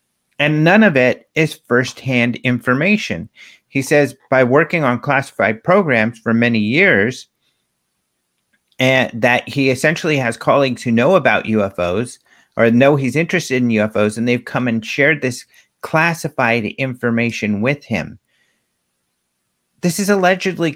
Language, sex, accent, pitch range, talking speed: English, male, American, 110-150 Hz, 135 wpm